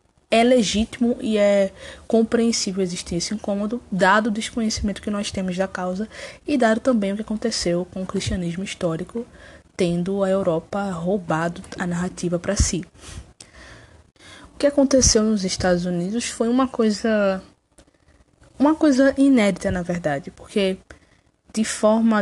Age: 20-39